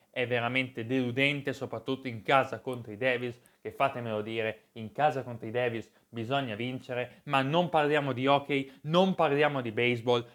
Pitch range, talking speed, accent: 120-150 Hz, 155 wpm, native